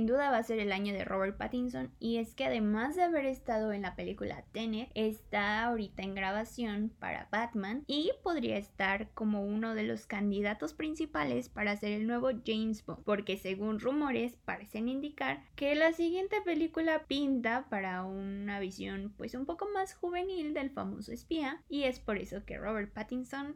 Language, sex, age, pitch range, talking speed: Spanish, female, 20-39, 205-275 Hz, 180 wpm